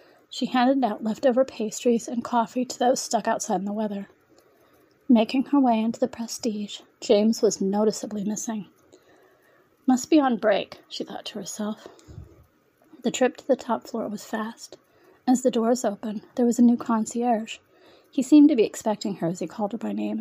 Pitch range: 210-260 Hz